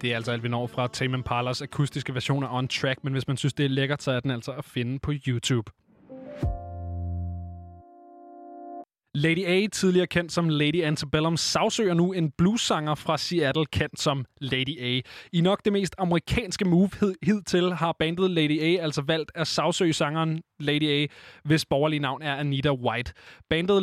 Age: 20-39